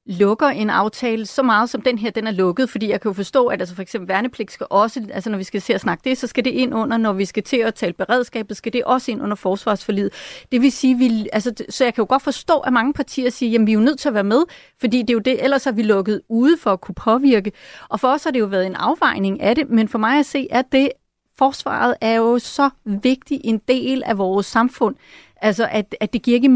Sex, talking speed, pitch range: female, 275 wpm, 215-260 Hz